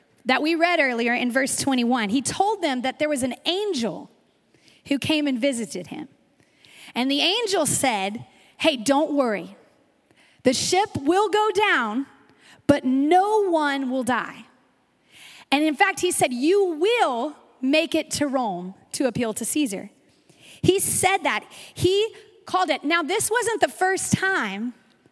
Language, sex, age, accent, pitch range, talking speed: English, female, 30-49, American, 265-345 Hz, 155 wpm